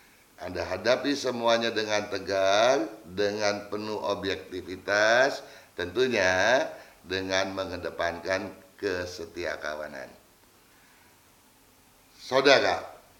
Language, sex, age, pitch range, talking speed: Indonesian, male, 50-69, 95-125 Hz, 65 wpm